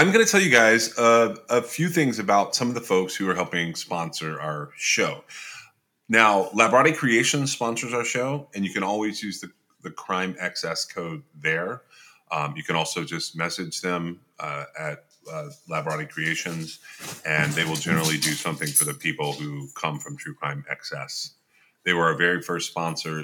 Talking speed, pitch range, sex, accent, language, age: 180 wpm, 85-120 Hz, male, American, English, 30-49